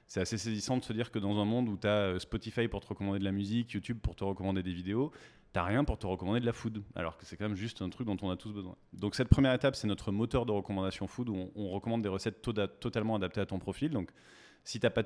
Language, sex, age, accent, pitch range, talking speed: French, male, 30-49, French, 95-110 Hz, 290 wpm